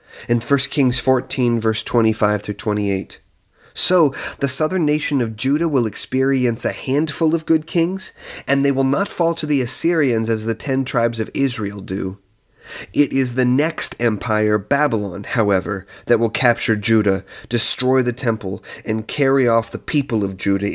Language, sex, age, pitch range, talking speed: English, male, 30-49, 110-150 Hz, 160 wpm